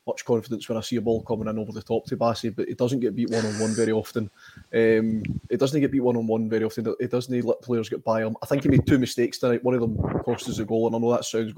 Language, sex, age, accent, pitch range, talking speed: English, male, 20-39, British, 110-125 Hz, 300 wpm